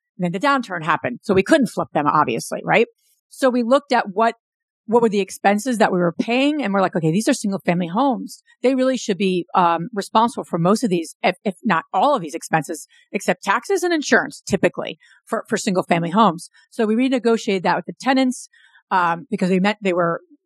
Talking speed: 210 wpm